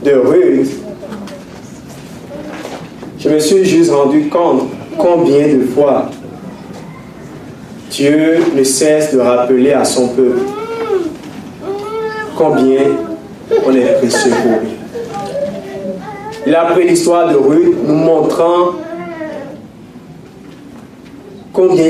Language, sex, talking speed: English, male, 90 wpm